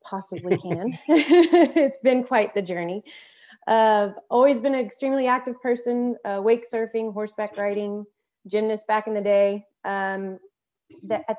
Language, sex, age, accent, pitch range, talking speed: English, female, 30-49, American, 195-245 Hz, 135 wpm